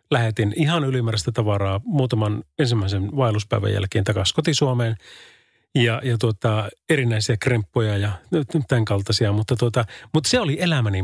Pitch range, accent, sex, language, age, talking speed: 105-140 Hz, native, male, Finnish, 30-49, 140 wpm